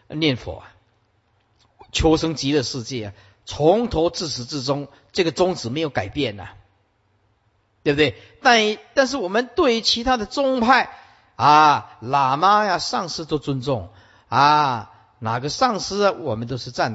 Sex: male